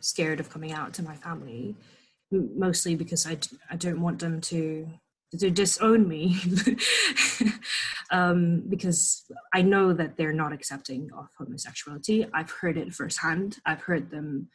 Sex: female